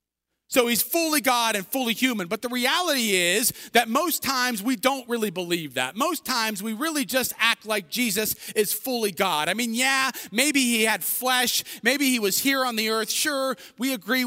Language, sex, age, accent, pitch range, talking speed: English, male, 30-49, American, 180-260 Hz, 200 wpm